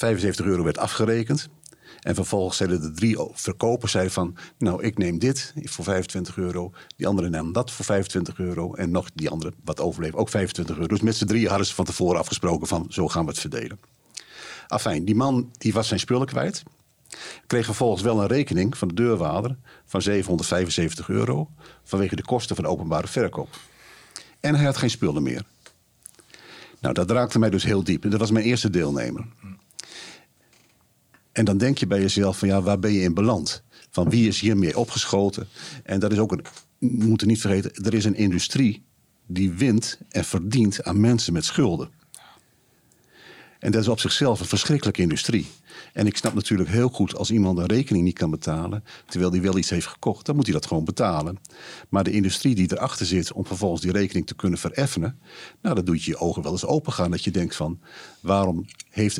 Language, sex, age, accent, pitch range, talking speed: Dutch, male, 50-69, Dutch, 90-115 Hz, 195 wpm